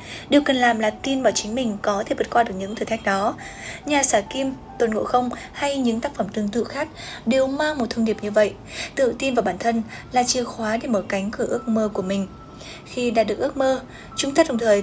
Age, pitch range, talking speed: 20-39, 205-260 Hz, 250 wpm